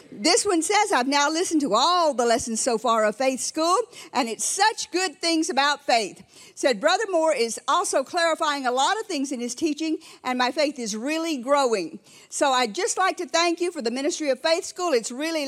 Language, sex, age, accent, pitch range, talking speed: English, female, 50-69, American, 260-350 Hz, 215 wpm